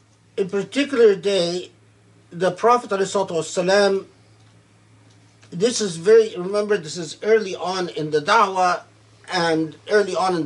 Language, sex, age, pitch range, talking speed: English, male, 50-69, 155-205 Hz, 120 wpm